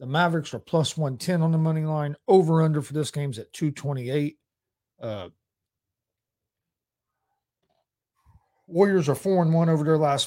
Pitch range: 130-165 Hz